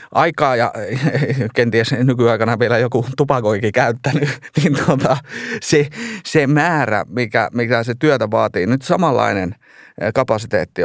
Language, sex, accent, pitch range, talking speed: Finnish, male, native, 105-135 Hz, 115 wpm